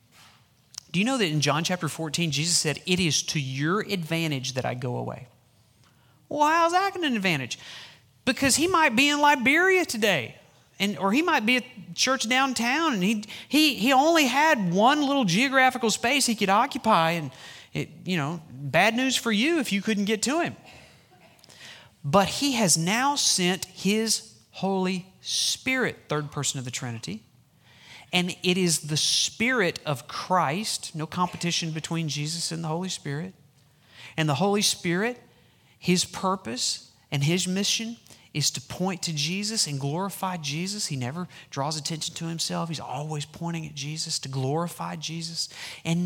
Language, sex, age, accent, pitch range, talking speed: English, male, 40-59, American, 150-220 Hz, 160 wpm